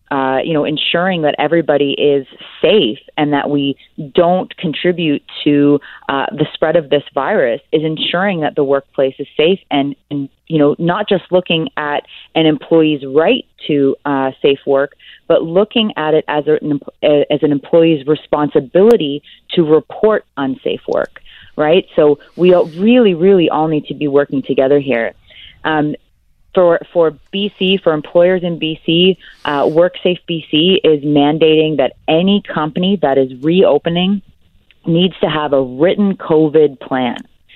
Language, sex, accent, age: English, female, American, 30-49